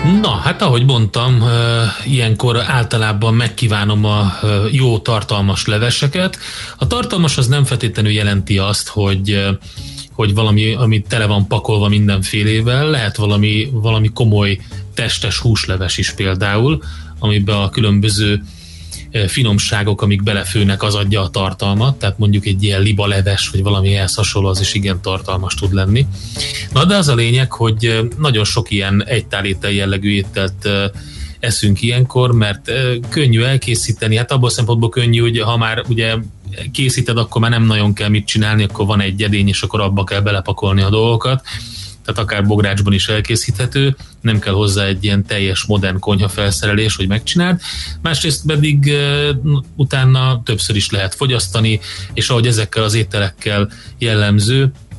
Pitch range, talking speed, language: 100-120 Hz, 140 wpm, Hungarian